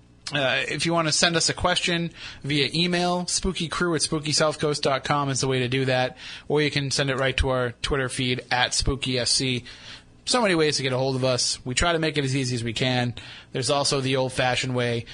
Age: 30-49